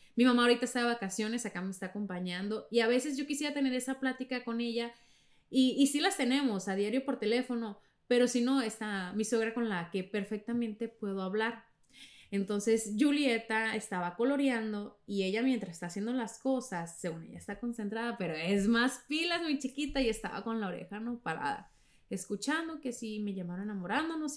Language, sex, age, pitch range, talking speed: Spanish, female, 20-39, 185-240 Hz, 185 wpm